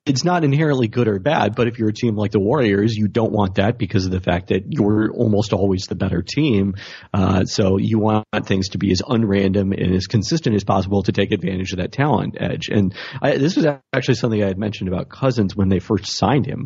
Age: 40-59